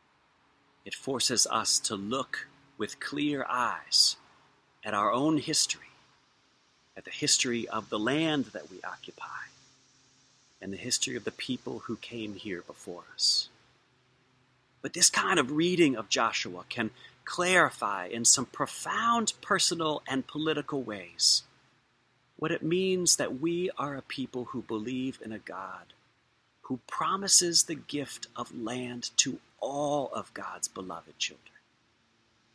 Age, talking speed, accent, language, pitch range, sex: 40-59, 135 wpm, American, English, 120-155 Hz, male